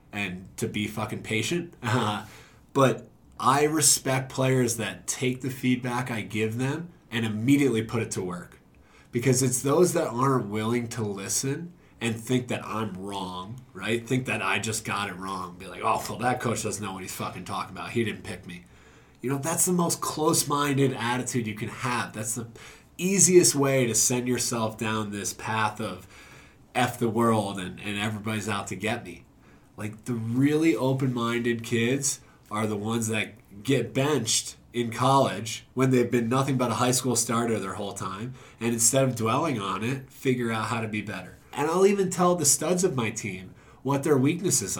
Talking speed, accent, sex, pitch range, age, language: 190 wpm, American, male, 110-135 Hz, 20-39, English